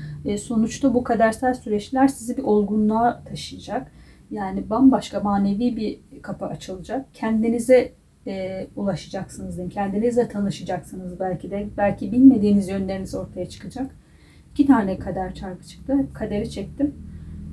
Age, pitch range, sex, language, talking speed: 30-49, 205-260 Hz, female, Turkish, 115 wpm